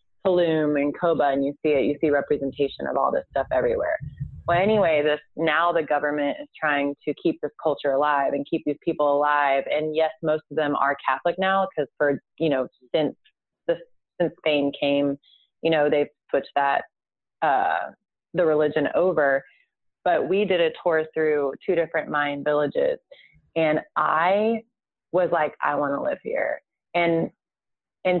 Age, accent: 30-49, American